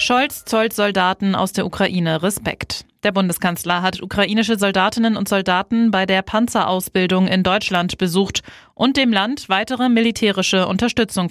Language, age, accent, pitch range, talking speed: German, 20-39, German, 185-220 Hz, 140 wpm